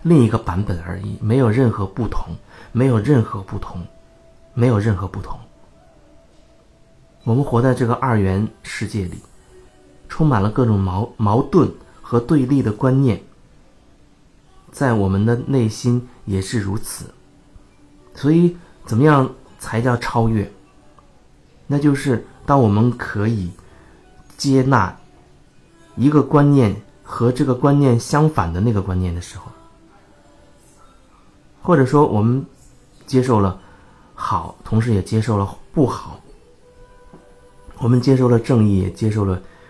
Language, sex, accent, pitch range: Chinese, male, native, 100-130 Hz